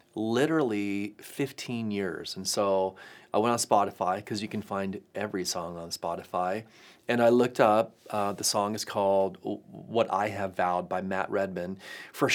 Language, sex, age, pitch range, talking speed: English, male, 30-49, 100-115 Hz, 165 wpm